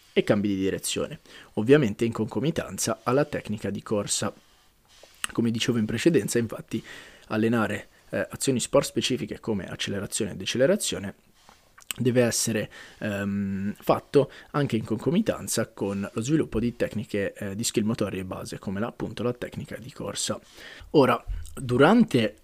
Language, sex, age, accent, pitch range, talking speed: Italian, male, 20-39, native, 105-125 Hz, 135 wpm